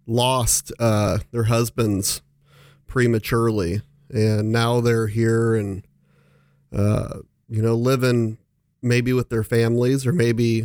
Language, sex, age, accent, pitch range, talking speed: English, male, 30-49, American, 110-125 Hz, 115 wpm